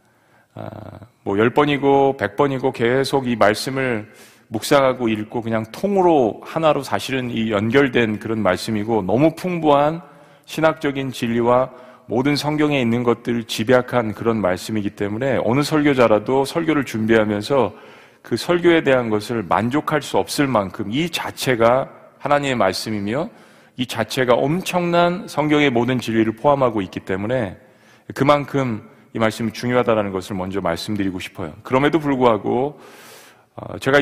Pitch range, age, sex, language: 110-140 Hz, 40-59, male, Korean